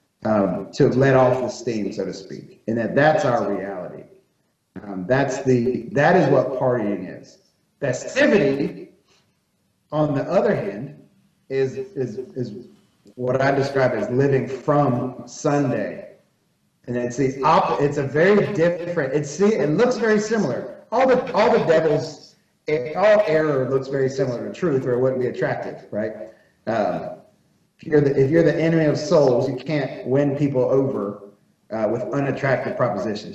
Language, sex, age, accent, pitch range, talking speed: English, male, 40-59, American, 125-155 Hz, 155 wpm